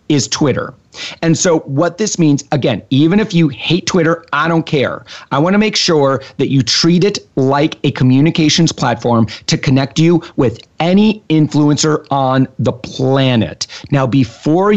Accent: American